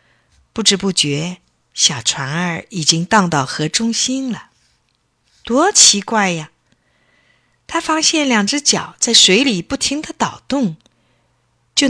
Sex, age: female, 50-69